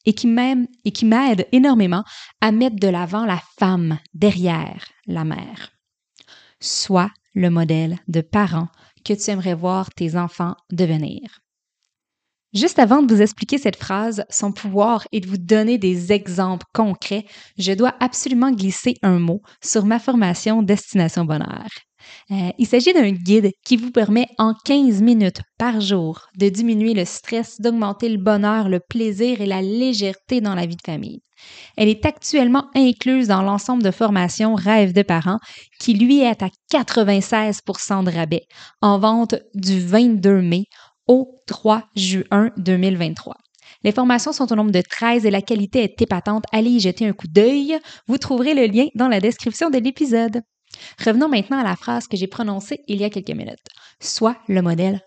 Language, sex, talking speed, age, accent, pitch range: French, female, 165 wpm, 20-39, Canadian, 190-240 Hz